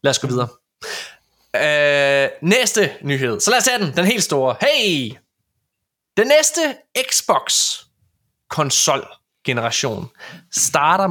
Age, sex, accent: 20-39, male, native